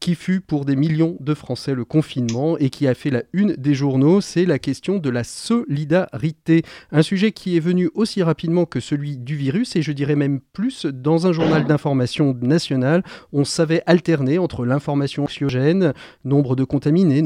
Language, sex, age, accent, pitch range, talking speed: French, male, 40-59, French, 130-165 Hz, 185 wpm